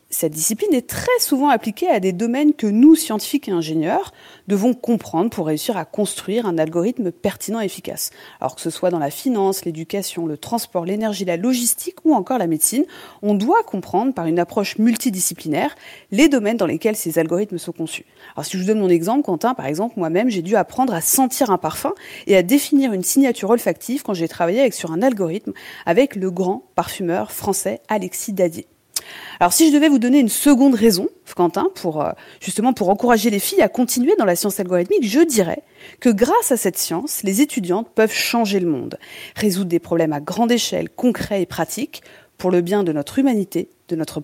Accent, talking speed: French, 200 wpm